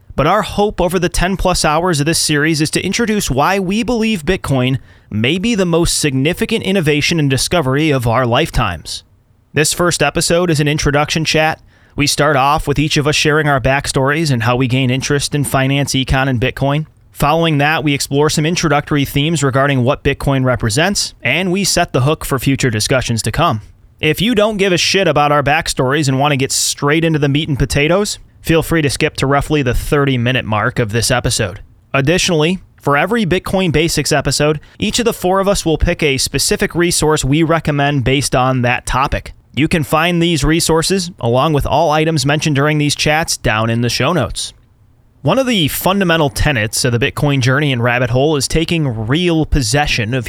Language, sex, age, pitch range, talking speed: English, male, 30-49, 130-165 Hz, 200 wpm